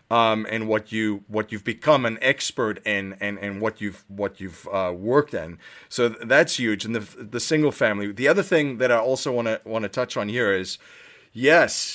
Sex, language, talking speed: male, English, 215 wpm